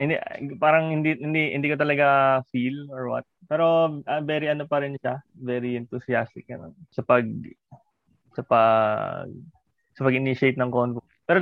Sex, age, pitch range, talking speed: male, 20-39, 125-145 Hz, 150 wpm